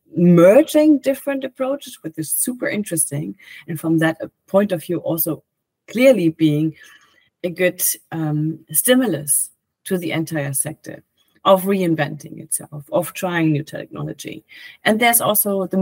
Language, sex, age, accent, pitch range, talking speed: English, female, 30-49, German, 160-195 Hz, 135 wpm